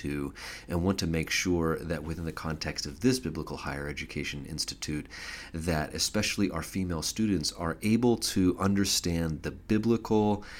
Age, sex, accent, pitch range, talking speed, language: 30-49, male, American, 75-95 Hz, 145 wpm, English